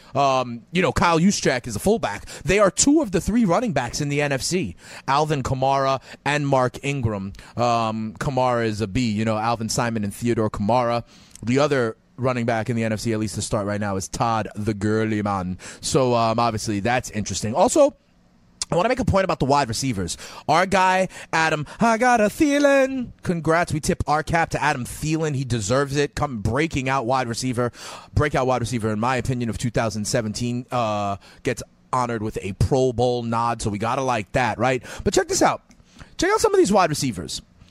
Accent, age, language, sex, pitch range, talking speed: American, 30-49, English, male, 110-155 Hz, 200 wpm